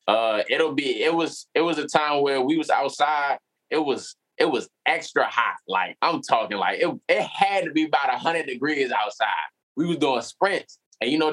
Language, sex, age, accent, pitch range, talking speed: English, male, 20-39, American, 130-190 Hz, 210 wpm